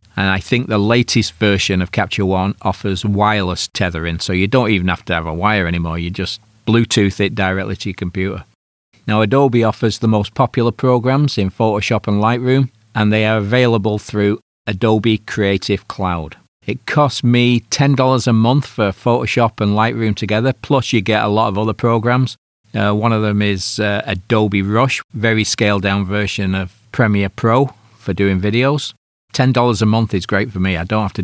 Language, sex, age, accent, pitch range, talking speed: English, male, 40-59, British, 100-120 Hz, 185 wpm